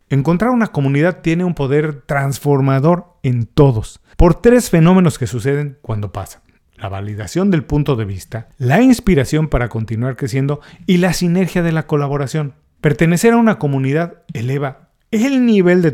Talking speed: 155 wpm